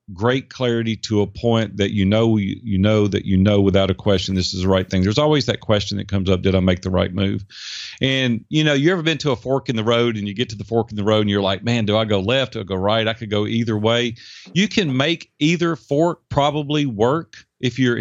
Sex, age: male, 40-59